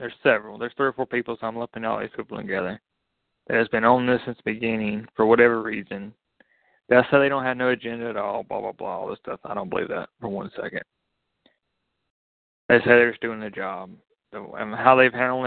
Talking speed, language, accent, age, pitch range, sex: 230 wpm, English, American, 20-39, 115-130 Hz, male